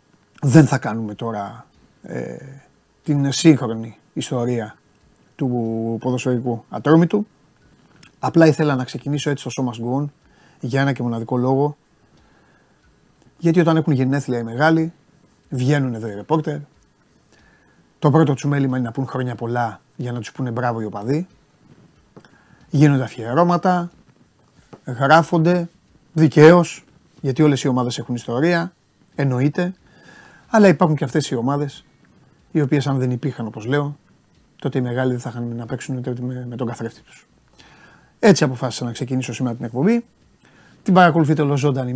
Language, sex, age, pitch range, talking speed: Greek, male, 30-49, 120-155 Hz, 140 wpm